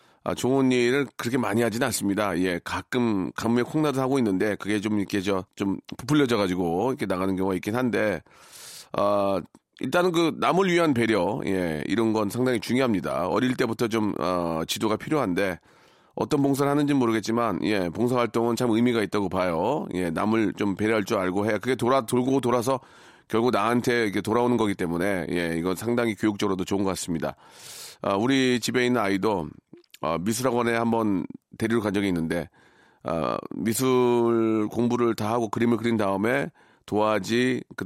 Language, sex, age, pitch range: Korean, male, 40-59, 100-125 Hz